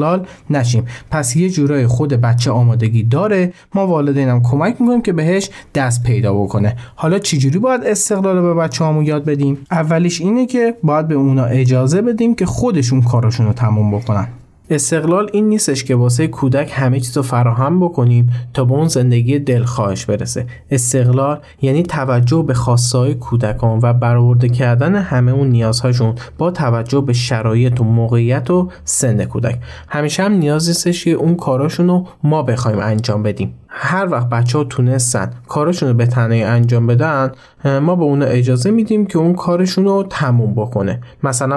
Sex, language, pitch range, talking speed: male, Persian, 120-155 Hz, 165 wpm